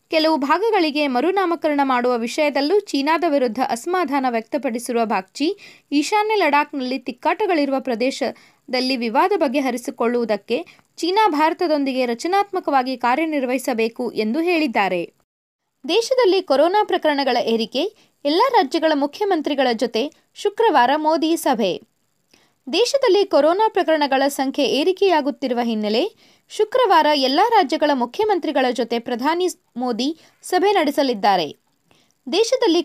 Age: 20-39